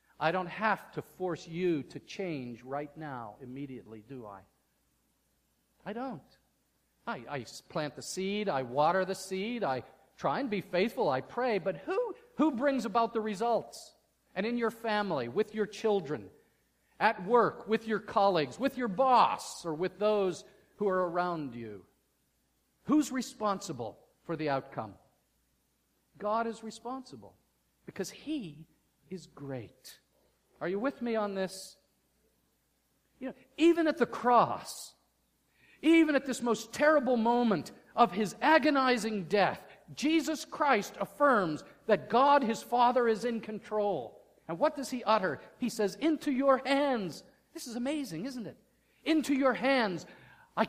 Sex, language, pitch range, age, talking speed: male, English, 180-265 Hz, 50-69, 145 wpm